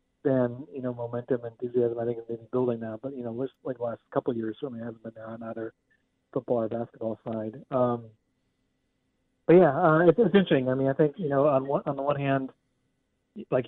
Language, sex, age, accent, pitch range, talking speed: English, male, 40-59, American, 115-130 Hz, 230 wpm